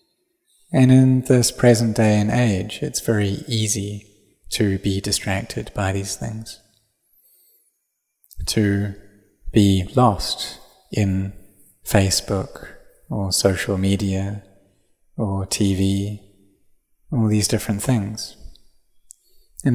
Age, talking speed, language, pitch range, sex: 30-49, 95 wpm, English, 95-115 Hz, male